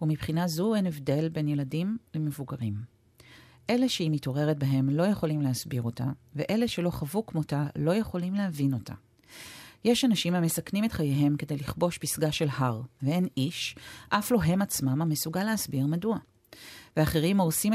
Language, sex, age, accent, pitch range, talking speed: Hebrew, female, 40-59, native, 135-170 Hz, 150 wpm